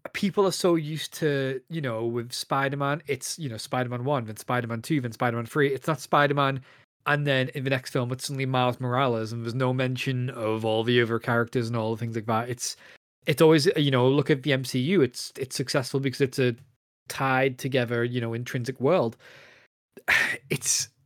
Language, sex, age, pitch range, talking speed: English, male, 20-39, 125-150 Hz, 215 wpm